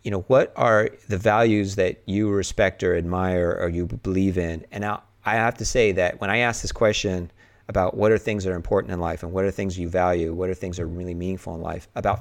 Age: 30-49